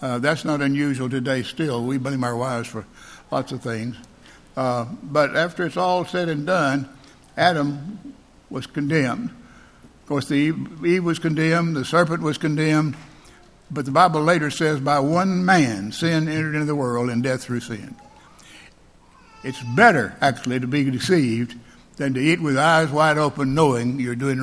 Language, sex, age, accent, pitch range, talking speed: English, male, 60-79, American, 130-155 Hz, 170 wpm